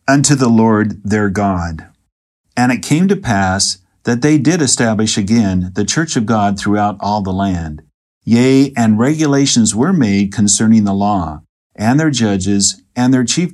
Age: 50-69